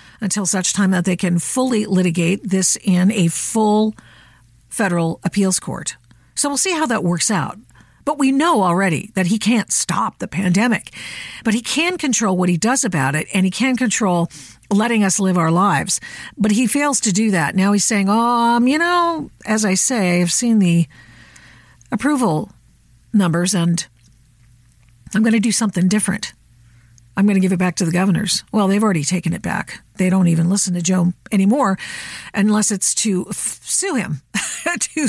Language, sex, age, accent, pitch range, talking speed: English, female, 50-69, American, 175-220 Hz, 185 wpm